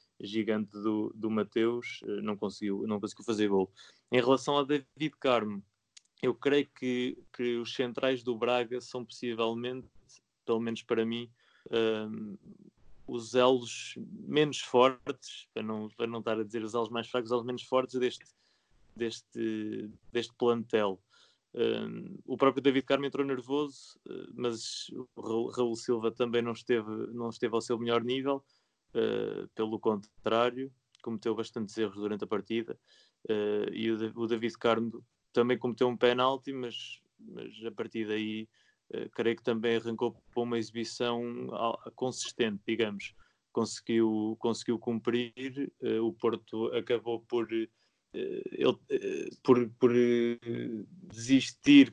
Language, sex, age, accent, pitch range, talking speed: Portuguese, male, 20-39, Brazilian, 115-125 Hz, 135 wpm